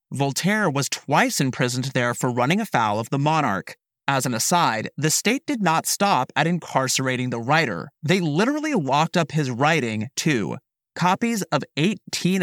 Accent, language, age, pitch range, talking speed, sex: American, English, 30-49, 130-175 Hz, 160 wpm, male